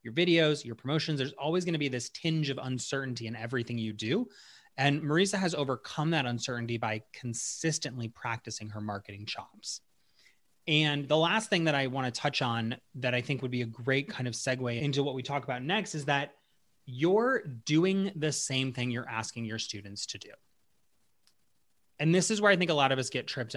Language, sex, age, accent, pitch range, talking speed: English, male, 30-49, American, 125-165 Hz, 205 wpm